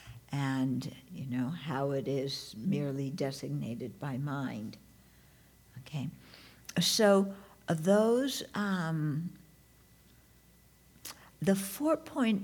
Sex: female